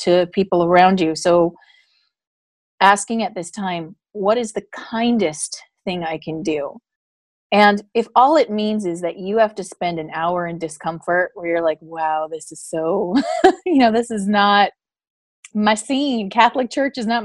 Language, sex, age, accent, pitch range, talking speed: English, female, 30-49, American, 175-225 Hz, 175 wpm